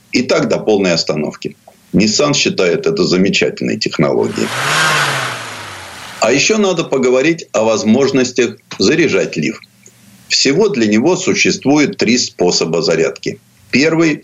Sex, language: male, Russian